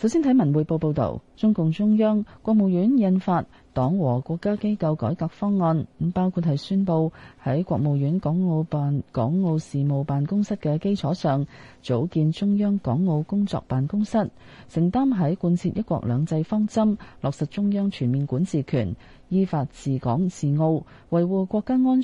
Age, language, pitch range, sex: 30-49, Chinese, 135-190 Hz, female